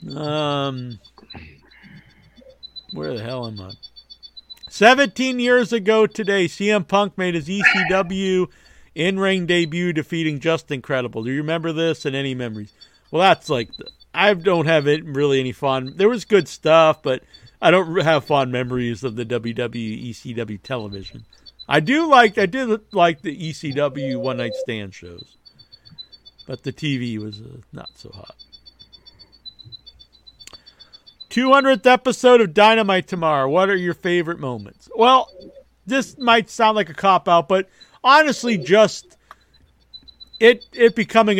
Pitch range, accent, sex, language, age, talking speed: 140-215 Hz, American, male, English, 50-69, 145 wpm